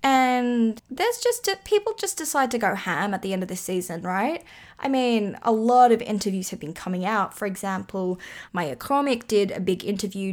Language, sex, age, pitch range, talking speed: English, female, 10-29, 190-245 Hz, 200 wpm